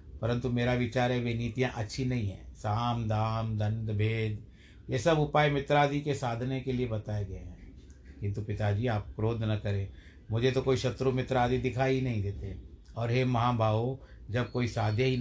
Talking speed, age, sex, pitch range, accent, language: 190 wpm, 60-79, male, 105-130 Hz, native, Hindi